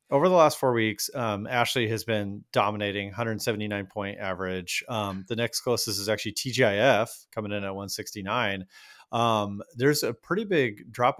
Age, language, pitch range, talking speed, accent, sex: 30-49, English, 105-120 Hz, 160 wpm, American, male